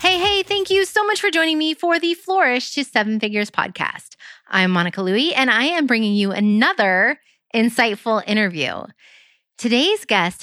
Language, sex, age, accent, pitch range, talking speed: English, female, 30-49, American, 190-265 Hz, 165 wpm